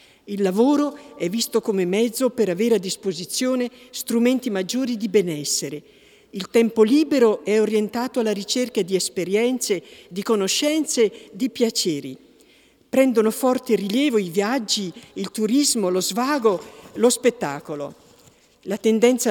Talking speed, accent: 125 wpm, native